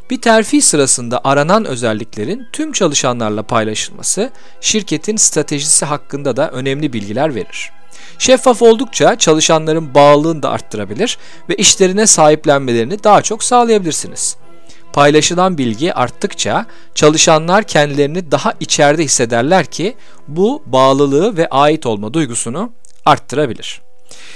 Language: Turkish